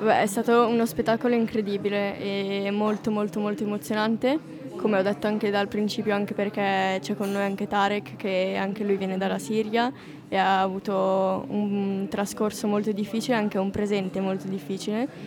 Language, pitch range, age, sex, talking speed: Italian, 200-230 Hz, 20-39, female, 160 wpm